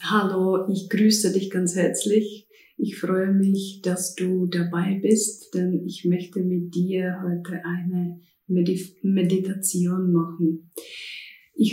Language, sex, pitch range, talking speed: German, female, 180-195 Hz, 120 wpm